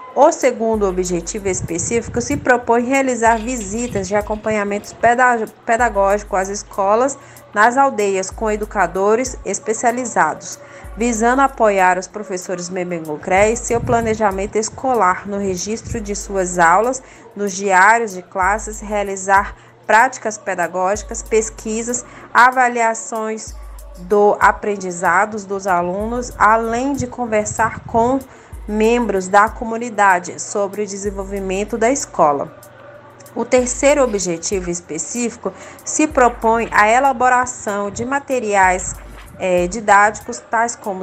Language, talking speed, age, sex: Portuguese, 105 wpm, 20-39, female